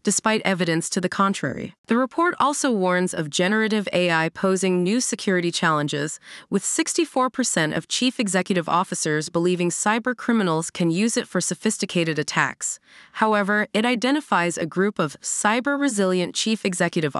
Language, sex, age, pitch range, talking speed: English, female, 30-49, 175-235 Hz, 140 wpm